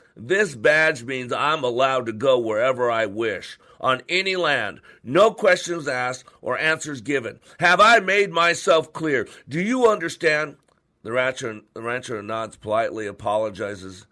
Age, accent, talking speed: 50-69, American, 145 wpm